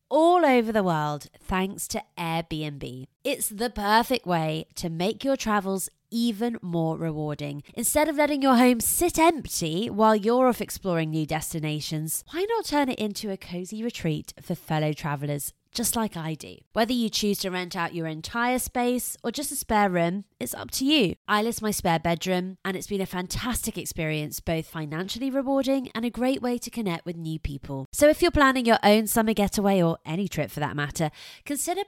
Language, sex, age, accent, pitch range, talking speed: English, female, 20-39, British, 165-250 Hz, 190 wpm